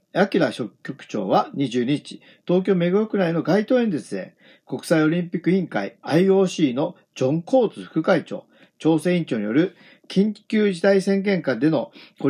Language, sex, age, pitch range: Japanese, male, 50-69, 160-225 Hz